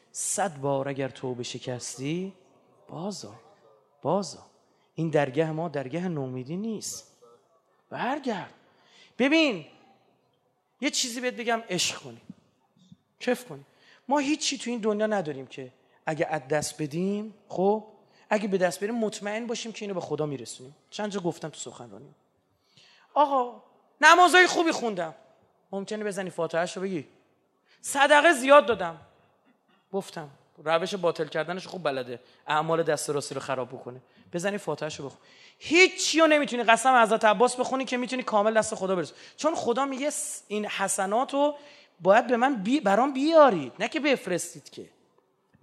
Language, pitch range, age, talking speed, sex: Persian, 160-245 Hz, 30-49, 140 wpm, male